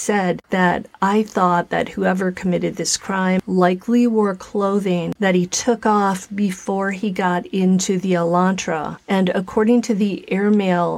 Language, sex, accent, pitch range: English, female, American, 180-215 Hz